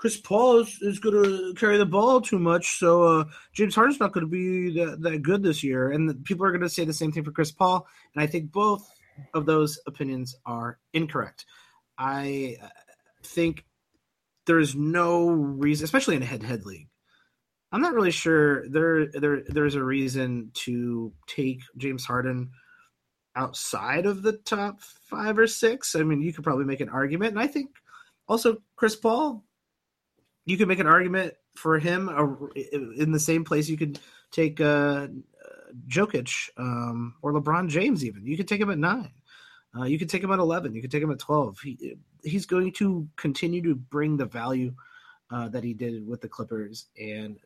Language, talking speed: English, 185 wpm